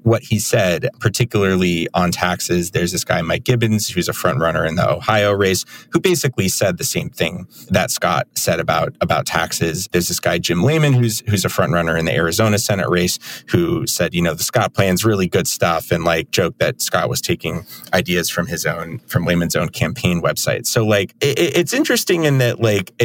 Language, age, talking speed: English, 30-49, 210 wpm